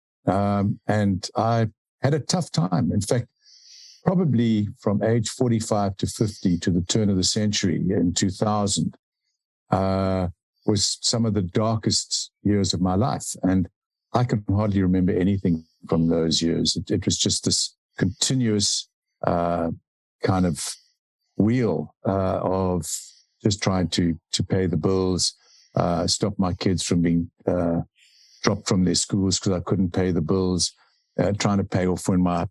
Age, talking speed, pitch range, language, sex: 50-69, 155 wpm, 90-110 Hz, English, male